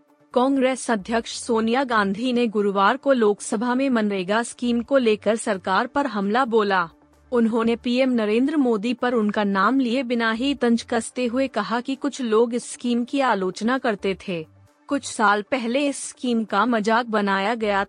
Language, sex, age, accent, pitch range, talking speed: Hindi, female, 30-49, native, 205-250 Hz, 165 wpm